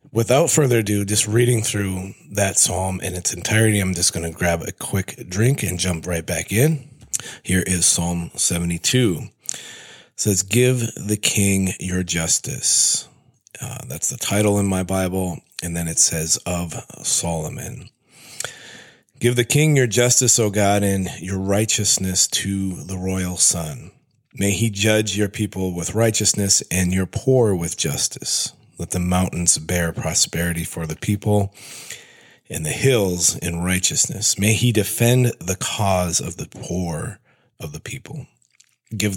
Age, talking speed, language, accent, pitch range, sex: 30-49, 150 wpm, English, American, 85-110 Hz, male